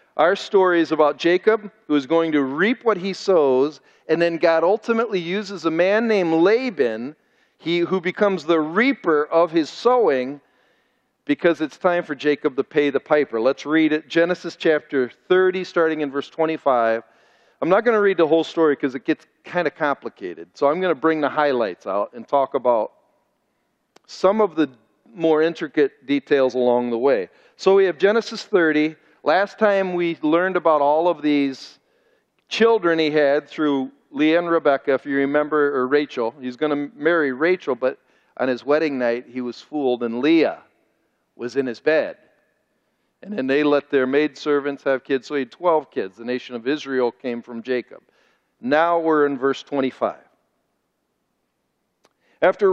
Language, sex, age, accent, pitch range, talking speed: English, male, 40-59, American, 140-185 Hz, 175 wpm